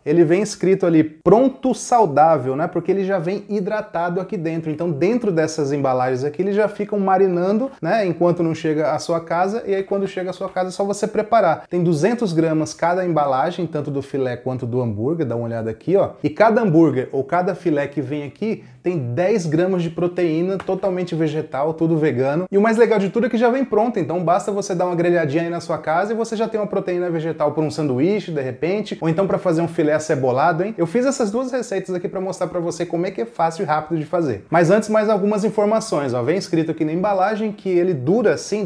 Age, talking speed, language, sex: 30-49, 235 wpm, English, male